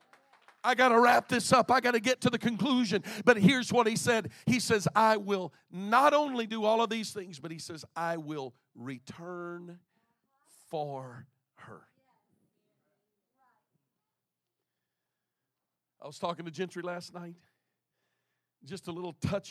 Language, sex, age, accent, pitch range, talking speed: English, male, 50-69, American, 160-210 Hz, 150 wpm